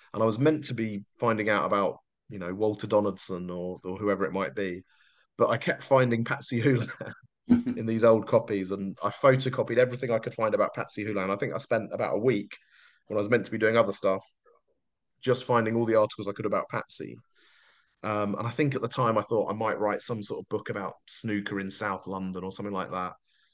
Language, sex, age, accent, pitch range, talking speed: English, male, 30-49, British, 100-115 Hz, 230 wpm